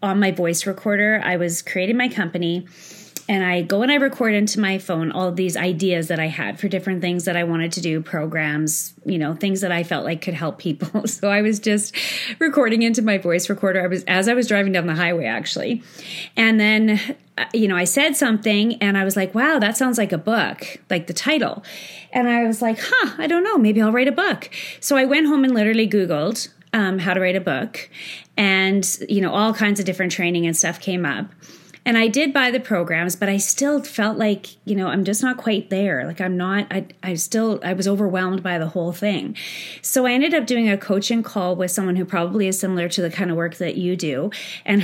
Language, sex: English, female